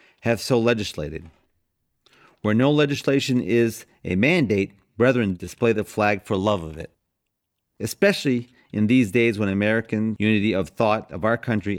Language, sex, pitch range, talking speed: English, male, 95-120 Hz, 150 wpm